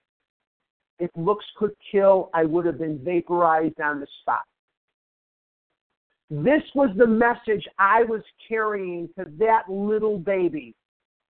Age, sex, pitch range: 50-69, male, 170-215 Hz